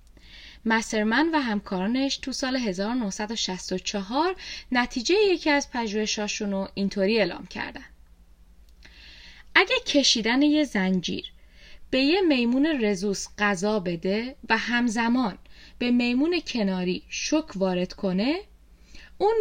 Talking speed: 100 wpm